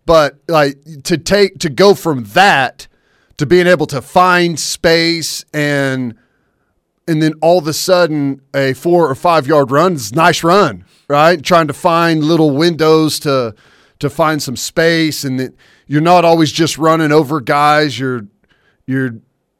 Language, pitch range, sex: English, 140-175 Hz, male